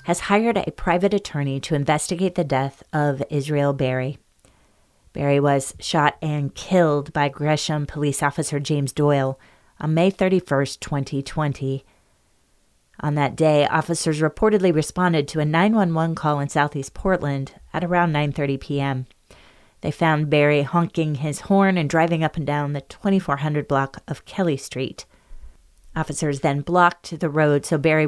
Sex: female